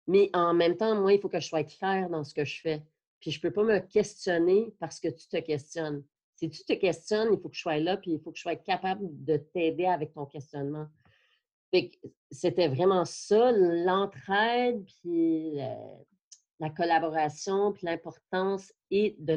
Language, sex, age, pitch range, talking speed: French, female, 40-59, 155-195 Hz, 190 wpm